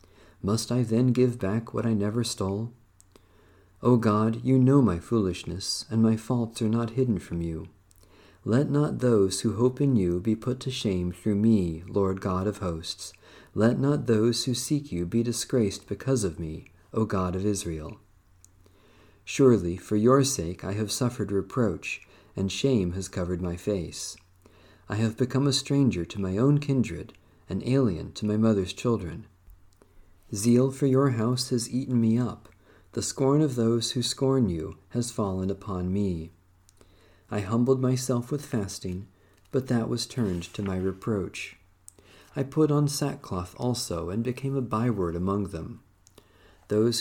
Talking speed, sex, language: 160 wpm, male, English